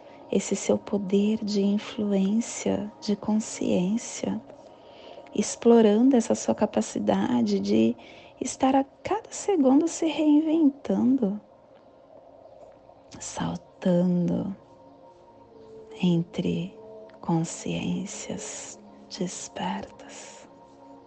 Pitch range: 165-215 Hz